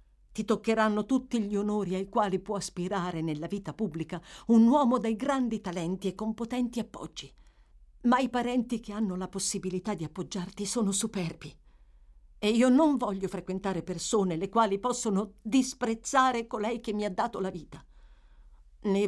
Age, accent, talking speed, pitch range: 50-69, native, 155 wpm, 155-220 Hz